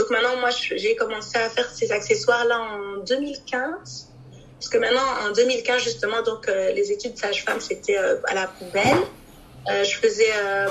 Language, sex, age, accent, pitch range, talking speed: French, female, 30-49, French, 225-370 Hz, 175 wpm